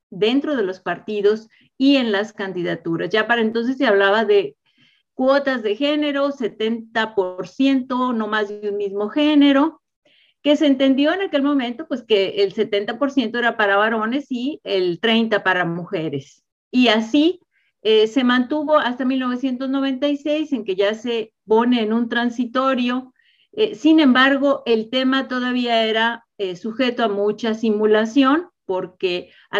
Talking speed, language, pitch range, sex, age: 145 wpm, Spanish, 200-265 Hz, female, 40-59